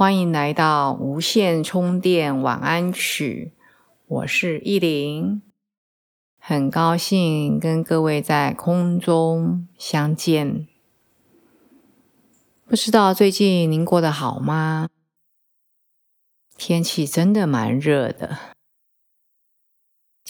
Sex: female